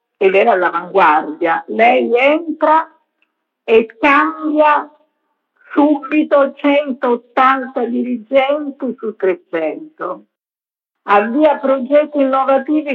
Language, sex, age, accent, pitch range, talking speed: Italian, female, 50-69, native, 200-275 Hz, 70 wpm